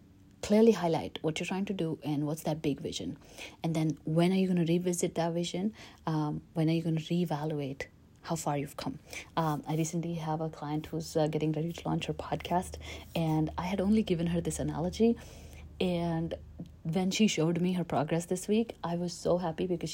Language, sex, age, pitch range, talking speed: English, female, 30-49, 150-175 Hz, 210 wpm